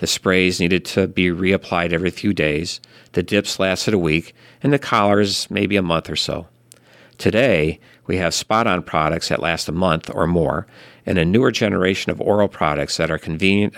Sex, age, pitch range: male, 50-69, 85-105 Hz